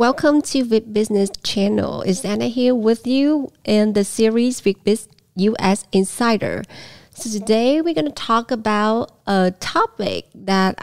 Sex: female